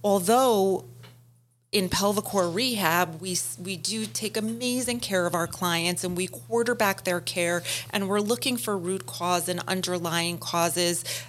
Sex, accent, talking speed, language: female, American, 145 wpm, English